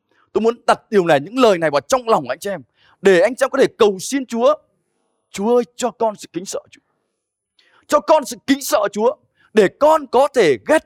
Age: 20-39